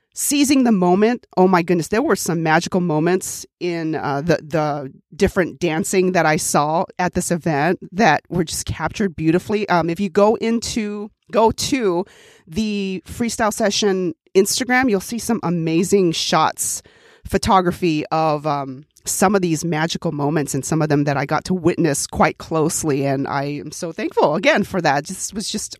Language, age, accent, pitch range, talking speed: English, 30-49, American, 160-210 Hz, 170 wpm